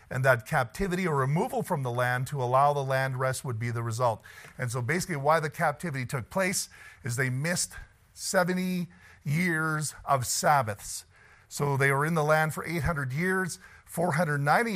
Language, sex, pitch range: English, male, 125-155 Hz